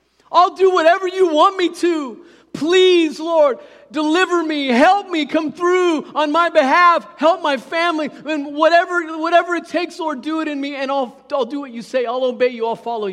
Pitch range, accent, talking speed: 175-290 Hz, American, 190 wpm